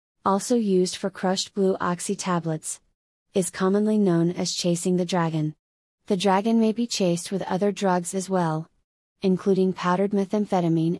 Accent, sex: American, female